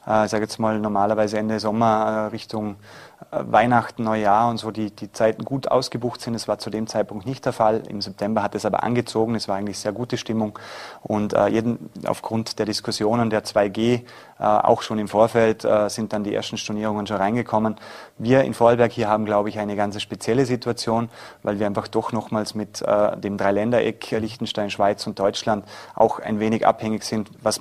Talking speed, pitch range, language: 195 wpm, 105-115 Hz, German